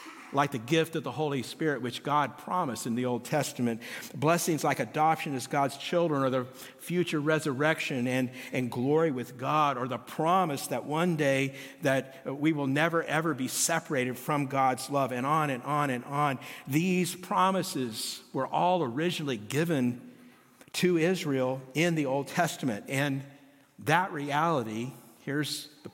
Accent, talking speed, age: American, 155 wpm, 50-69